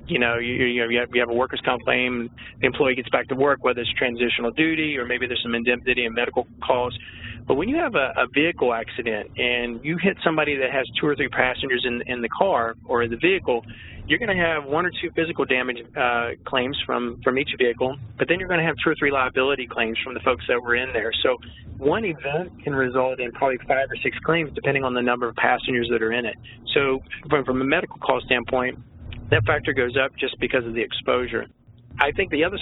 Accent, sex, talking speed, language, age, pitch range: American, male, 235 wpm, English, 40-59, 120-140 Hz